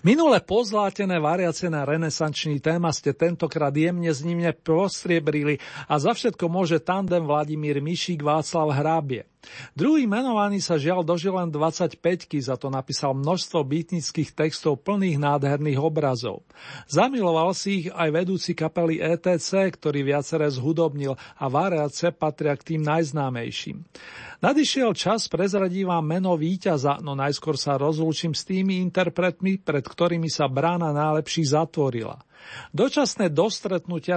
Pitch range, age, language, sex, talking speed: 150-180 Hz, 40-59, Slovak, male, 125 wpm